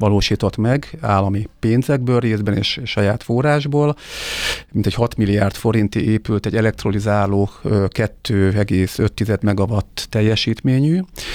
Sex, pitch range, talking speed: male, 100-115 Hz, 100 wpm